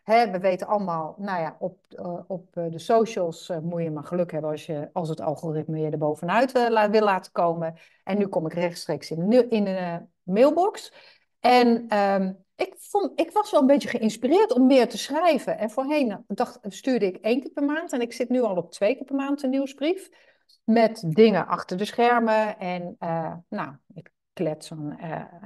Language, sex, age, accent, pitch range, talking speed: Dutch, female, 60-79, Dutch, 175-270 Hz, 200 wpm